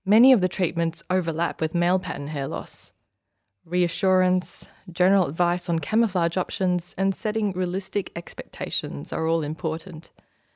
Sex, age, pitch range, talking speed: female, 20-39, 160-195 Hz, 130 wpm